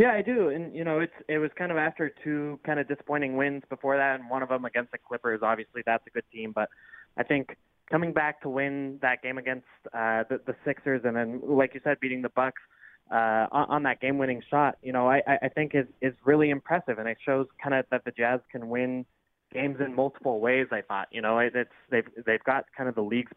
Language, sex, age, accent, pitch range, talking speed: English, male, 20-39, American, 120-145 Hz, 240 wpm